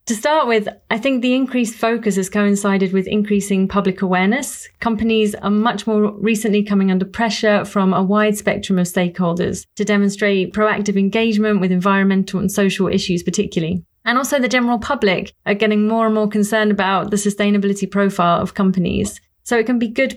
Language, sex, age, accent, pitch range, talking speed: English, female, 30-49, British, 190-220 Hz, 180 wpm